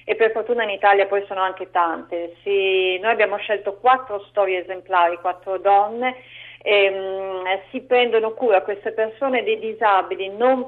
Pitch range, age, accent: 190-235 Hz, 40-59, native